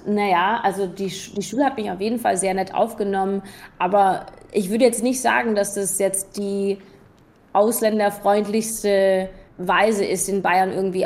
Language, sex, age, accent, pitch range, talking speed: German, female, 20-39, German, 190-215 Hz, 155 wpm